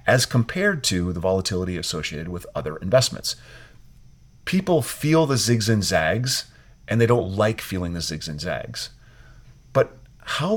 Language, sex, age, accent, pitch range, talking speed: English, male, 40-59, American, 95-130 Hz, 150 wpm